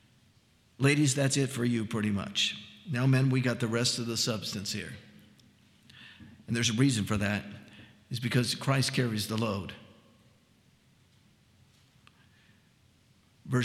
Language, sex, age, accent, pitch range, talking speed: English, male, 50-69, American, 110-130 Hz, 135 wpm